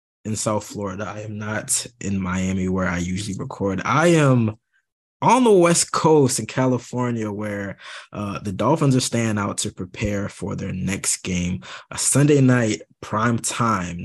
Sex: male